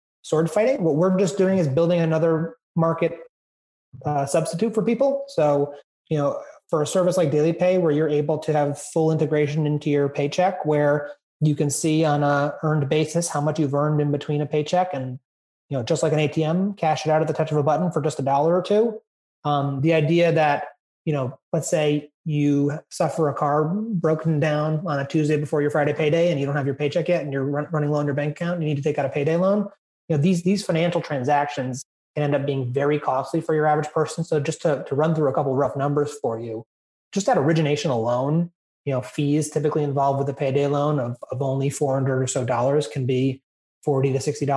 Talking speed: 230 wpm